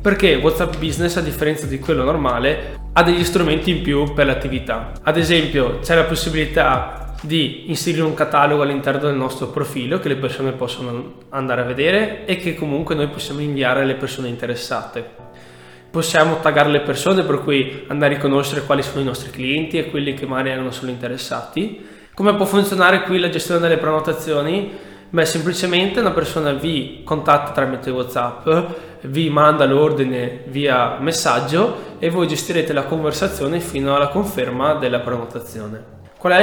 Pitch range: 135-165 Hz